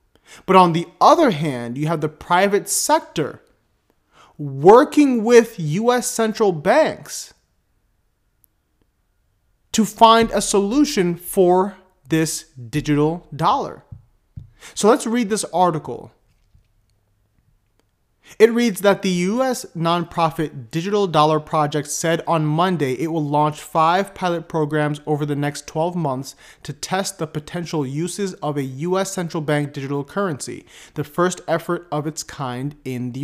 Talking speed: 130 wpm